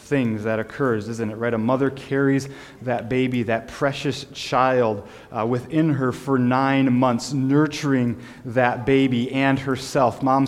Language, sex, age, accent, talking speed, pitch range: English, male, 20-39, American, 150 wpm, 115-140 Hz